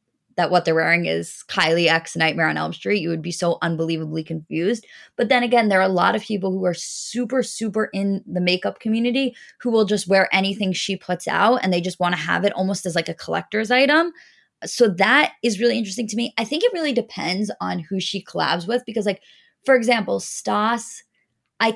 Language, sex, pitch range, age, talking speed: English, female, 170-225 Hz, 20-39, 215 wpm